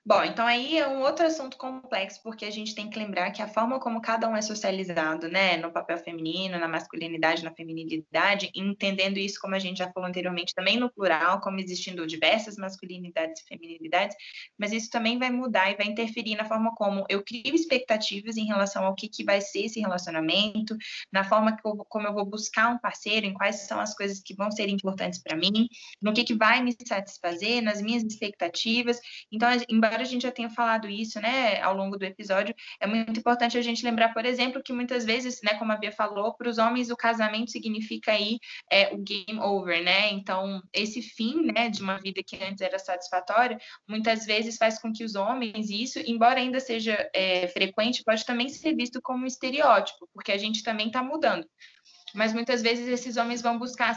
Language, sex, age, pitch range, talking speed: Portuguese, female, 20-39, 195-235 Hz, 210 wpm